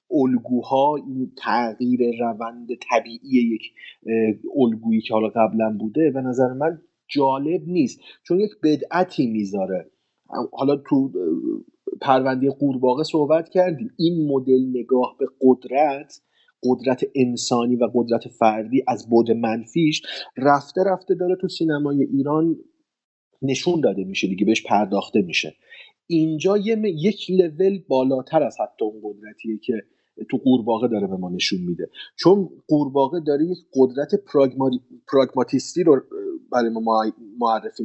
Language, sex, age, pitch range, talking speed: Persian, male, 30-49, 120-170 Hz, 125 wpm